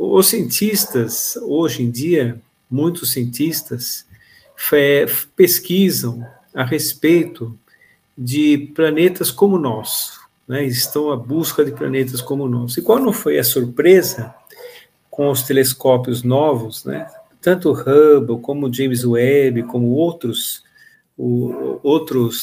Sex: male